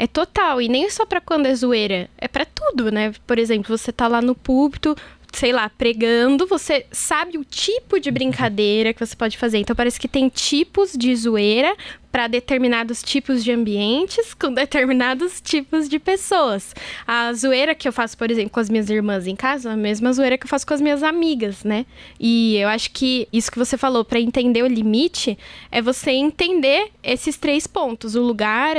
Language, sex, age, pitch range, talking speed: Portuguese, female, 10-29, 235-295 Hz, 200 wpm